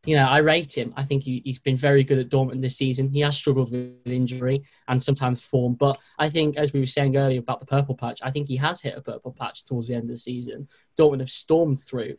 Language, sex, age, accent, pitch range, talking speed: English, male, 10-29, British, 125-140 Hz, 265 wpm